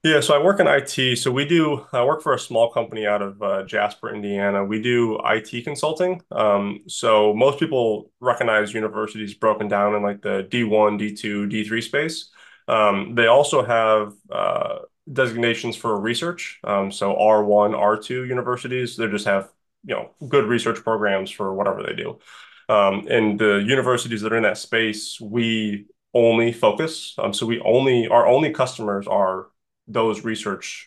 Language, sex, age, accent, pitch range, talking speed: English, male, 20-39, American, 105-125 Hz, 165 wpm